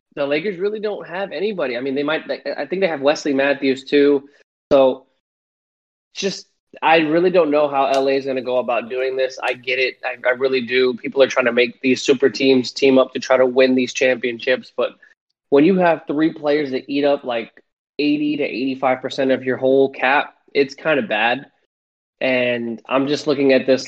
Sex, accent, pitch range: male, American, 130-155 Hz